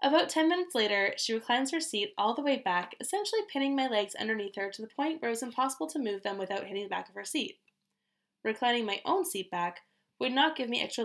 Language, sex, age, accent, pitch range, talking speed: English, female, 10-29, American, 200-275 Hz, 245 wpm